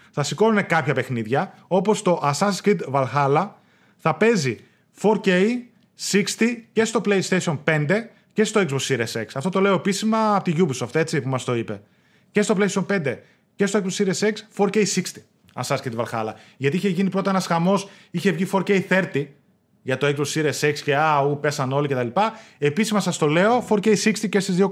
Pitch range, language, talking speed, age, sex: 155-215 Hz, Greek, 195 wpm, 20-39, male